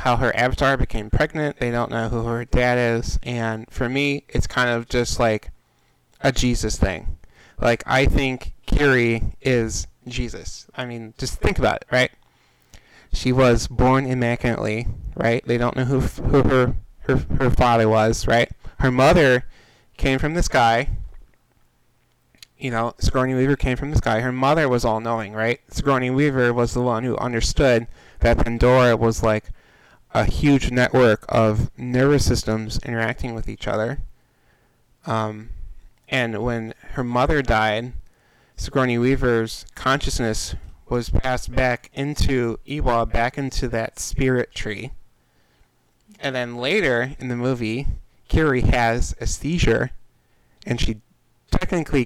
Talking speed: 145 wpm